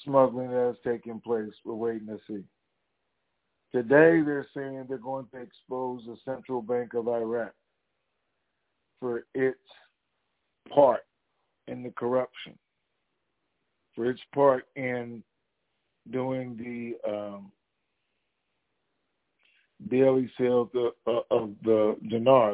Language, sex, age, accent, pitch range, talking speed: English, male, 50-69, American, 120-135 Hz, 110 wpm